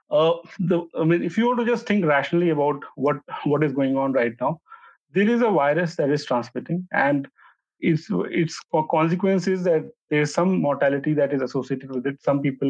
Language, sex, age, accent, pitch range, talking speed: English, male, 40-59, Indian, 145-190 Hz, 195 wpm